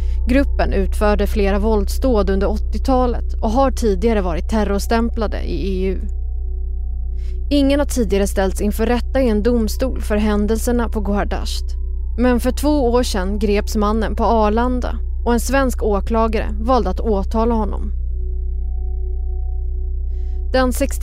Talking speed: 125 wpm